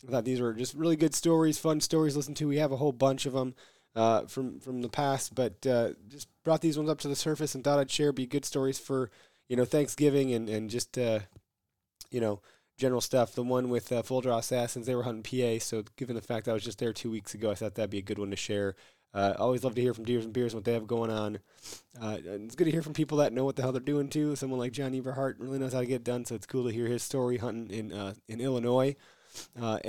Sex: male